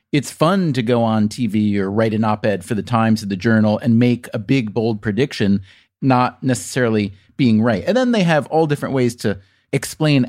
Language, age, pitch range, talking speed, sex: English, 30-49, 110-150 Hz, 205 wpm, male